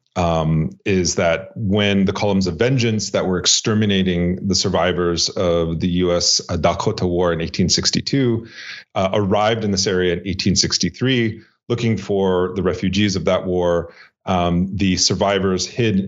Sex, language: male, English